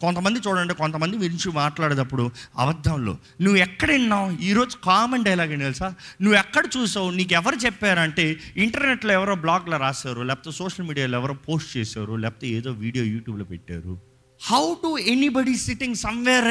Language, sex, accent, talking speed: Telugu, male, native, 140 wpm